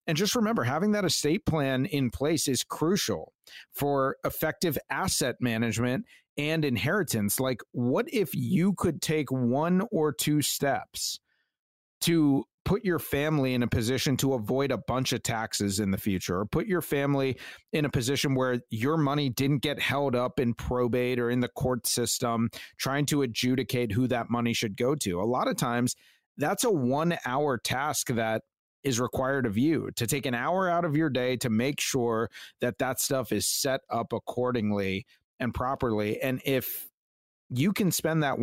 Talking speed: 175 wpm